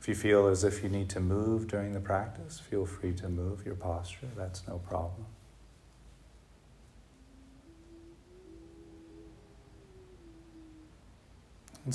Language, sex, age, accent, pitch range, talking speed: English, male, 40-59, American, 90-105 Hz, 110 wpm